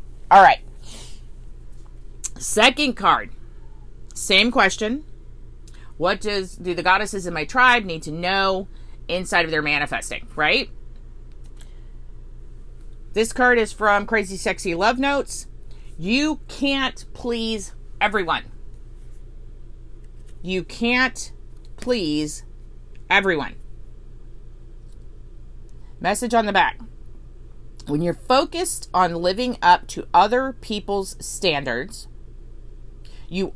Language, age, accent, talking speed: English, 40-59, American, 95 wpm